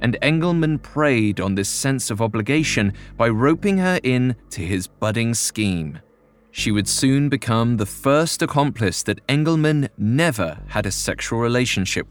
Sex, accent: male, British